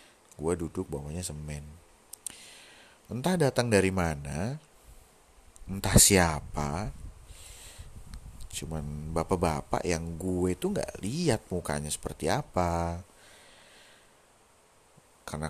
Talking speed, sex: 80 wpm, male